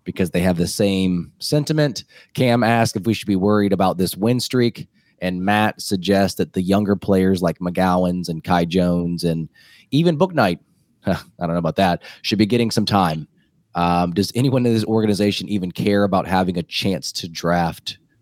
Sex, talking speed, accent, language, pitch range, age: male, 190 wpm, American, English, 90-115 Hz, 20-39